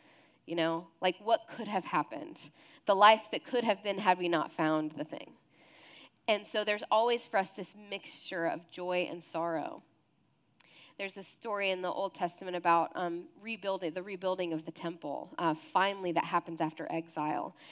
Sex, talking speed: female, 180 wpm